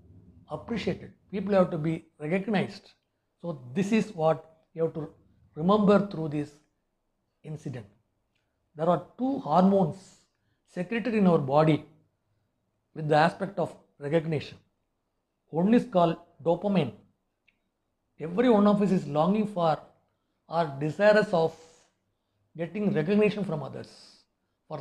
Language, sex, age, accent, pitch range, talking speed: English, male, 60-79, Indian, 140-185 Hz, 120 wpm